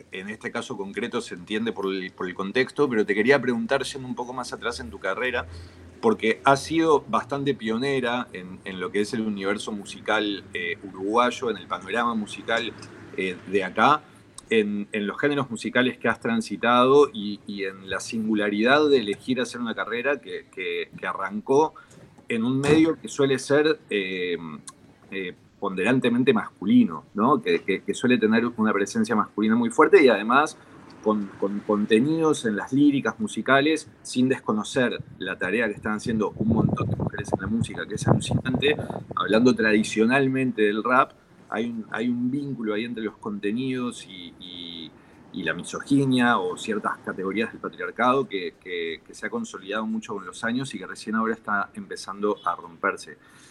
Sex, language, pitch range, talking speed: male, Spanish, 105-140 Hz, 170 wpm